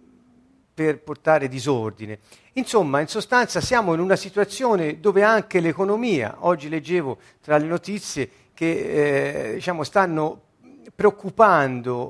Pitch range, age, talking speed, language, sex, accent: 120-185 Hz, 50-69, 115 wpm, Italian, male, native